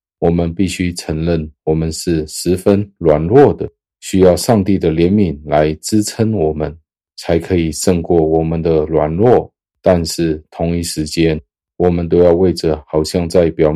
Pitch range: 80-90 Hz